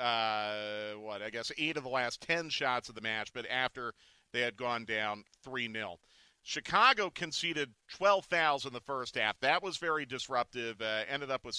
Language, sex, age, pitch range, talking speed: English, male, 40-59, 115-145 Hz, 185 wpm